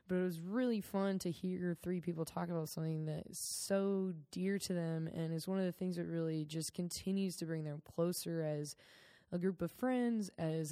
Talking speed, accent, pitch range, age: 215 wpm, American, 150-175 Hz, 20-39